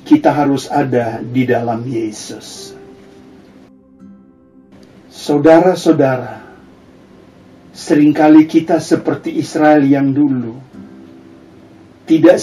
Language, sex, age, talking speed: Indonesian, male, 50-69, 70 wpm